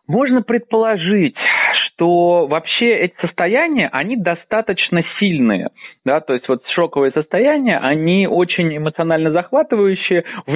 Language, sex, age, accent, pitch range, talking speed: Russian, male, 30-49, native, 125-180 Hz, 115 wpm